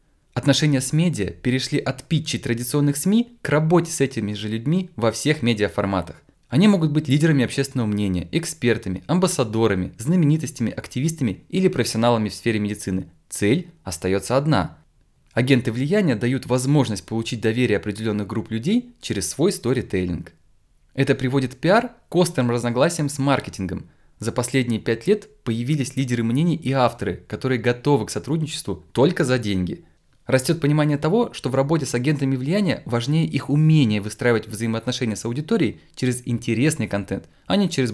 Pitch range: 110-145 Hz